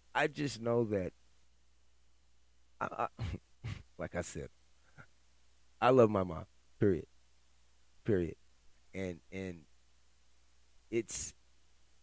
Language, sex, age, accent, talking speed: English, male, 30-49, American, 90 wpm